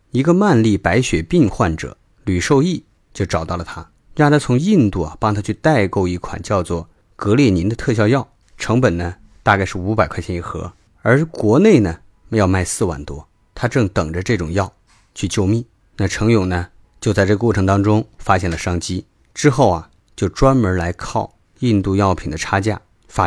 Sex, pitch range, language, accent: male, 90-110 Hz, Chinese, native